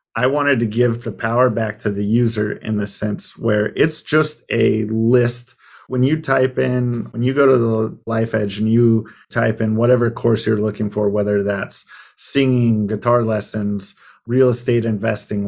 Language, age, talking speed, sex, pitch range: English, 30-49, 180 wpm, male, 110-125 Hz